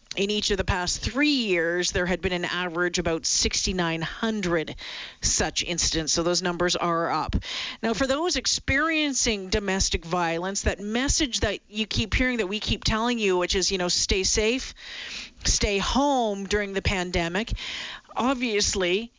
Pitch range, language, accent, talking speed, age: 185-225 Hz, English, American, 155 wpm, 40-59